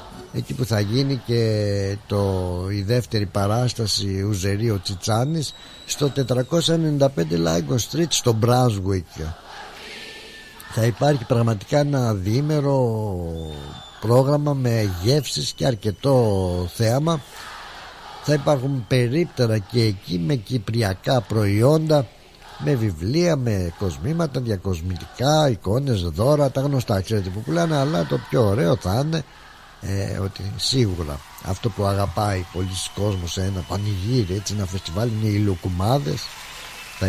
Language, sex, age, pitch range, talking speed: Greek, male, 60-79, 95-130 Hz, 115 wpm